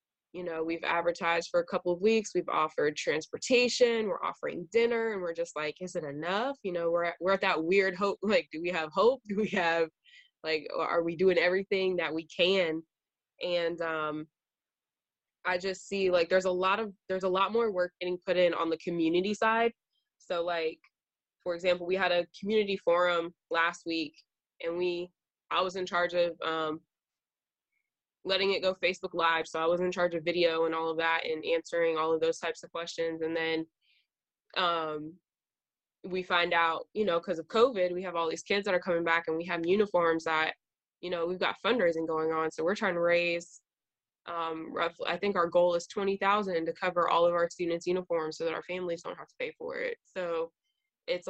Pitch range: 165-190 Hz